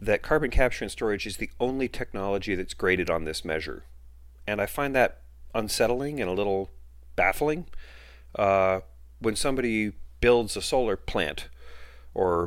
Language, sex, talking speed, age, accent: English, male, 150 wpm, 40-59, American